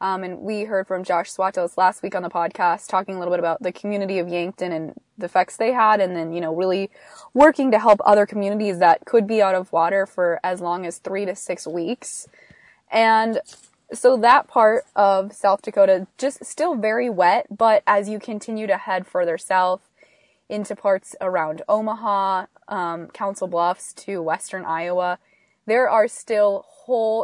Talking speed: 185 wpm